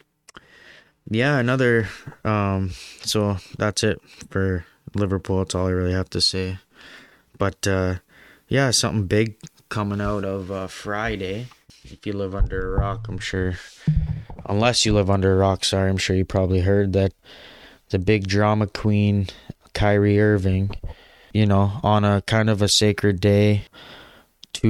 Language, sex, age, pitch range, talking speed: English, male, 20-39, 95-105 Hz, 150 wpm